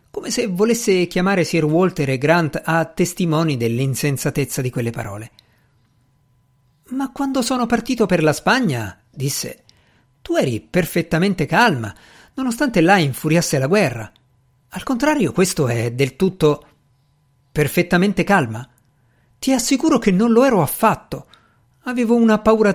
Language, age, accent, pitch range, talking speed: Italian, 50-69, native, 130-195 Hz, 130 wpm